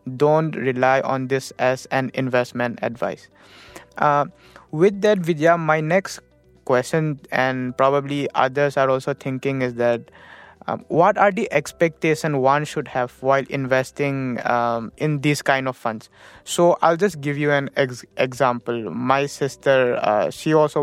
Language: English